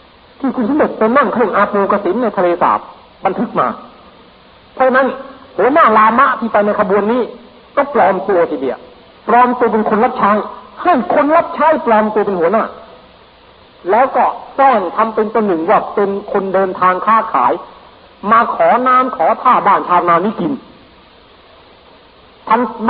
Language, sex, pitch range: Thai, male, 205-260 Hz